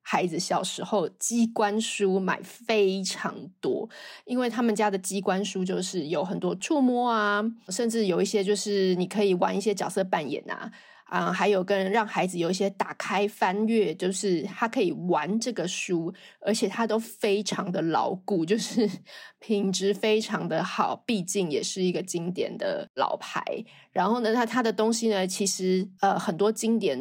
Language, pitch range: Chinese, 190-220 Hz